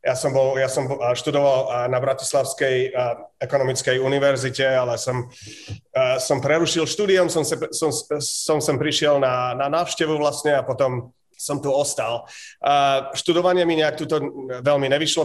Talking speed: 140 wpm